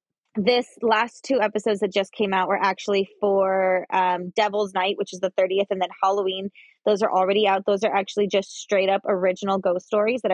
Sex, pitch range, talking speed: female, 185-215 Hz, 205 wpm